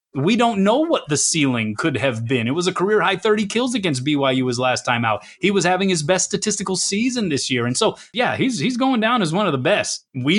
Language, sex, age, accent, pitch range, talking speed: English, male, 30-49, American, 140-185 Hz, 250 wpm